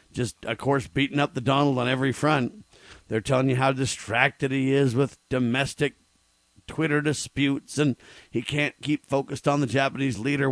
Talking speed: 170 wpm